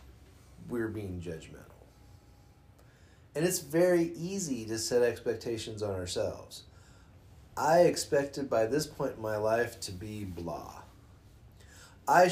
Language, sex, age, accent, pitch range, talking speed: English, male, 40-59, American, 100-160 Hz, 115 wpm